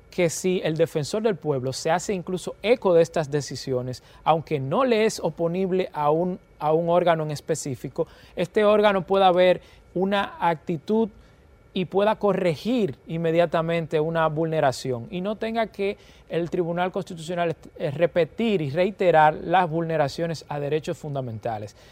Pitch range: 155-195 Hz